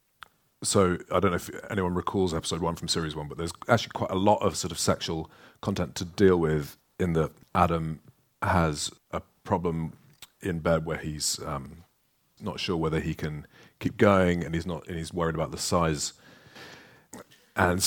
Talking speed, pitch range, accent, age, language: 180 wpm, 80-100 Hz, British, 40-59, English